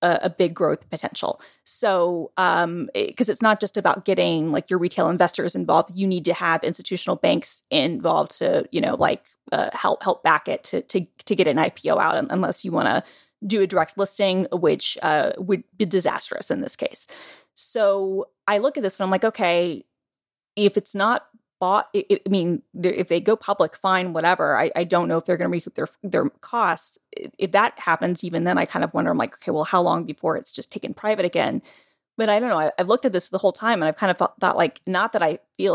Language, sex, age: English, female, 20-39